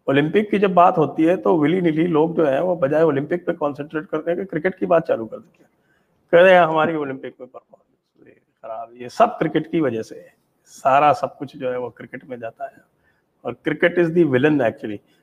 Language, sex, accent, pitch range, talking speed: English, male, Indian, 125-175 Hz, 90 wpm